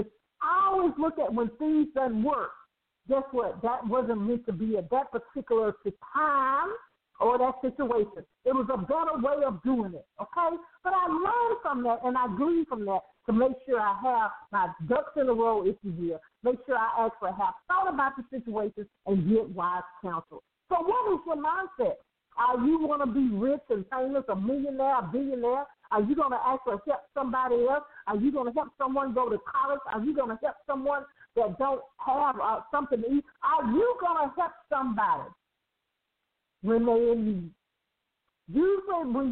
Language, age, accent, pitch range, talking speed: English, 50-69, American, 230-305 Hz, 190 wpm